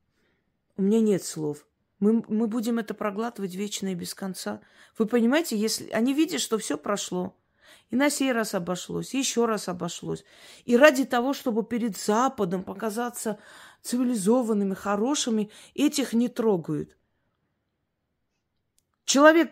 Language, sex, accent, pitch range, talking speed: Russian, female, native, 185-235 Hz, 130 wpm